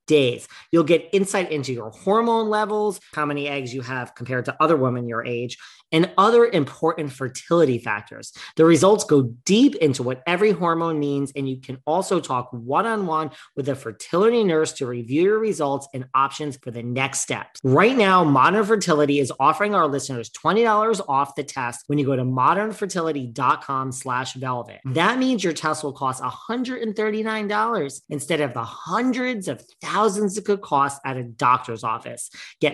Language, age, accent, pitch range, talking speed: English, 40-59, American, 125-180 Hz, 170 wpm